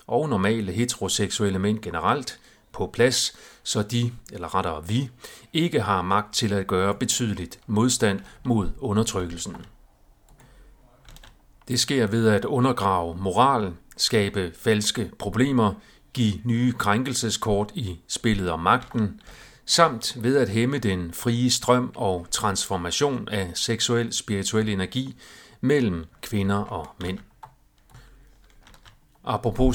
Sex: male